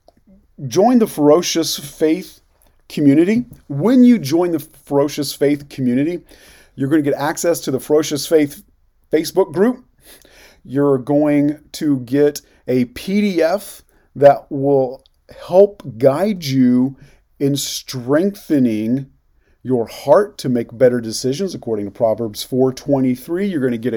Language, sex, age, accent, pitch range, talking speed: English, male, 40-59, American, 125-160 Hz, 125 wpm